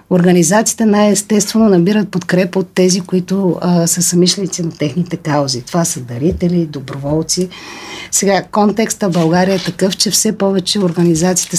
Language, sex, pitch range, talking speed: Bulgarian, female, 170-205 Hz, 140 wpm